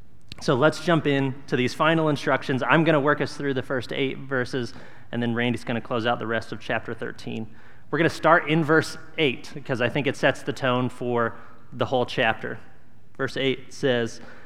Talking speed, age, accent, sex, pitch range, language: 210 wpm, 30-49, American, male, 120-145 Hz, English